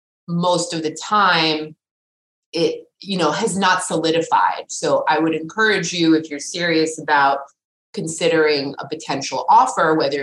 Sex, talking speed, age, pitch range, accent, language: female, 140 wpm, 30-49, 145-170 Hz, American, English